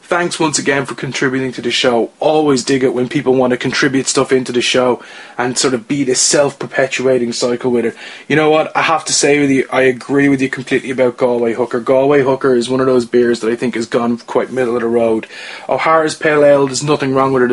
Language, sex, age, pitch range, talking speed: English, male, 20-39, 120-135 Hz, 245 wpm